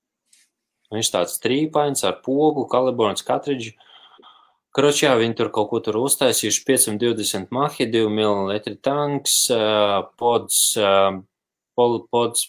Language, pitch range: English, 95-115 Hz